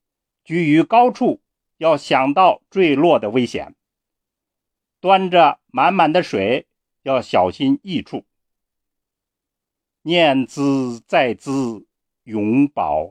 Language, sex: Chinese, male